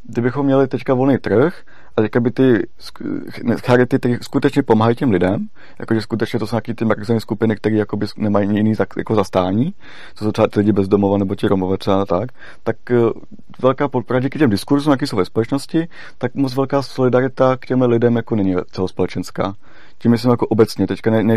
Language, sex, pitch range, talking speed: Czech, male, 100-125 Hz, 175 wpm